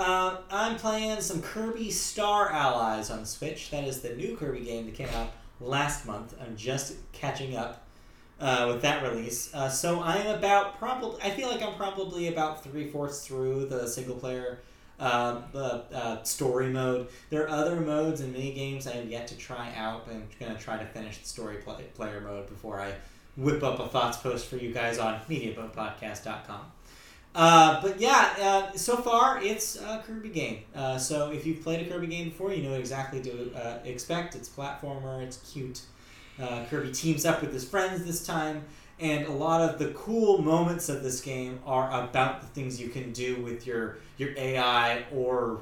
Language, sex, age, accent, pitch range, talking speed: English, male, 30-49, American, 120-170 Hz, 190 wpm